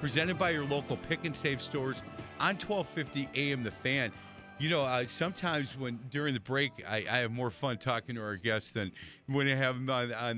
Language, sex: English, male